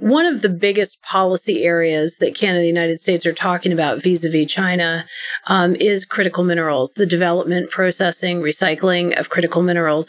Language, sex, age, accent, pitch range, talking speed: English, female, 40-59, American, 175-215 Hz, 165 wpm